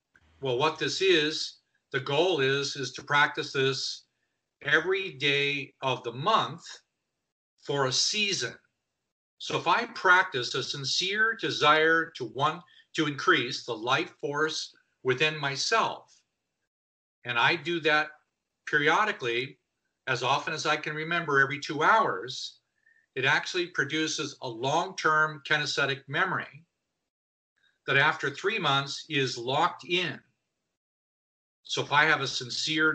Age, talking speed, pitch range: 50-69, 125 wpm, 130-165 Hz